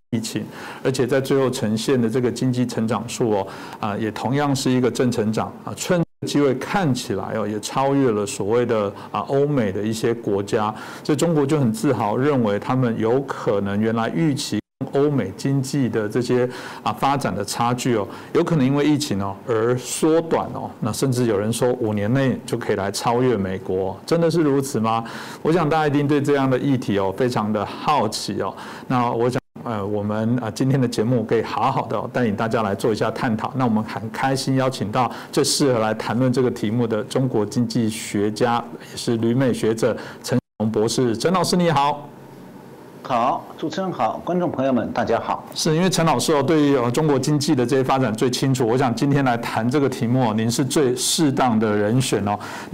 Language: Chinese